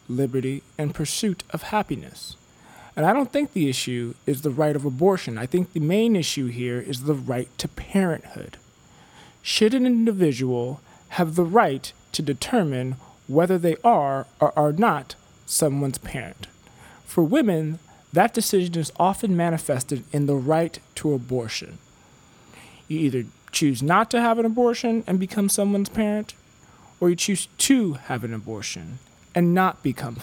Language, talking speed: English, 155 wpm